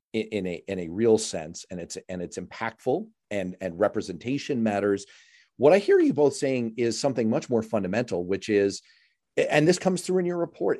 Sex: male